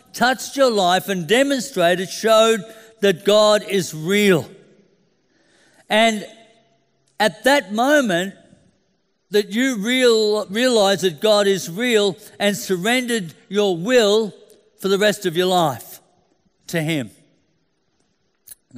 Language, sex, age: English, male, 60-79